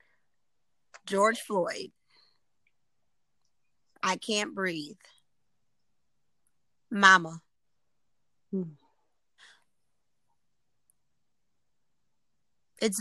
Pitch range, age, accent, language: 185-230 Hz, 30-49, American, English